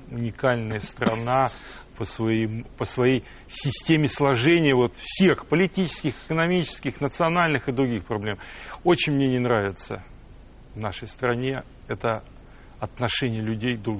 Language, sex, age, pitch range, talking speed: Russian, male, 40-59, 110-135 Hz, 105 wpm